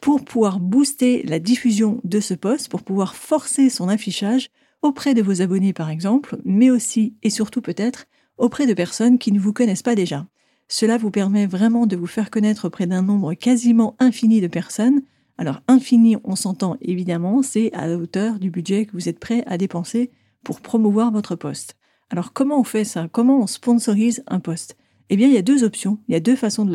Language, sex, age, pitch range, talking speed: French, female, 40-59, 190-240 Hz, 205 wpm